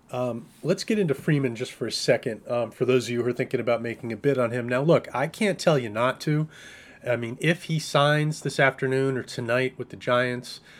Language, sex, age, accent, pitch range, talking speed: English, male, 30-49, American, 120-150 Hz, 240 wpm